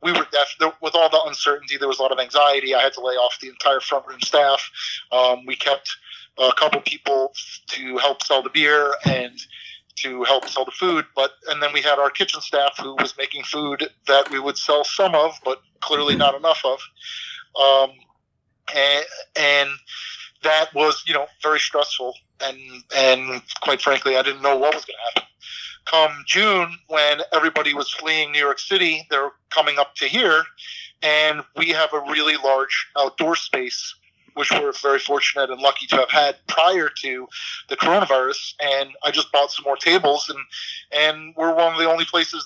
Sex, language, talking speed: male, English, 190 wpm